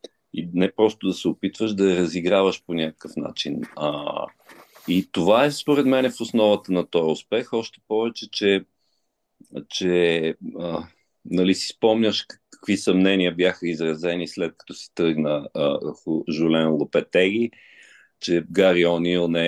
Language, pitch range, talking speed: Bulgarian, 85-115 Hz, 145 wpm